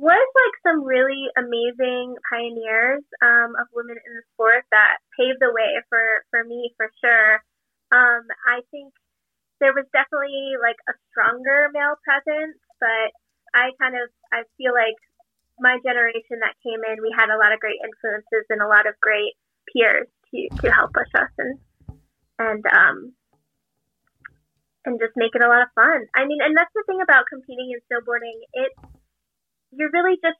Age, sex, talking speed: 20-39, female, 170 wpm